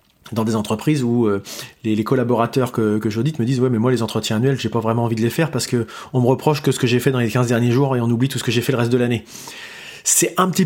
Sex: male